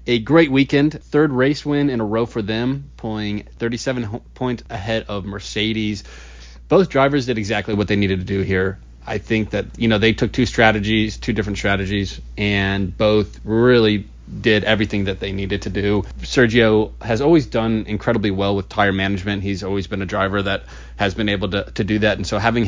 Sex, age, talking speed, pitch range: male, 30-49, 195 wpm, 100-110 Hz